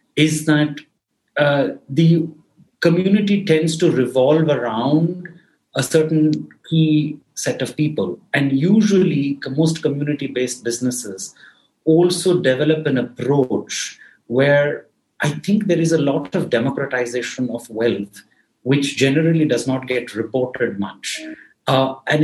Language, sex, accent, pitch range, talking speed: English, male, Indian, 120-155 Hz, 120 wpm